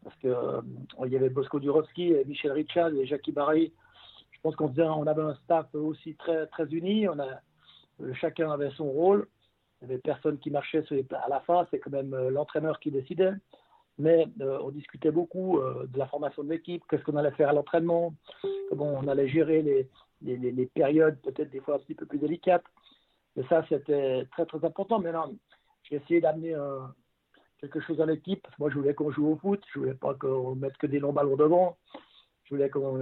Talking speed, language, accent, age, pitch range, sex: 215 wpm, French, French, 60-79, 145-175 Hz, male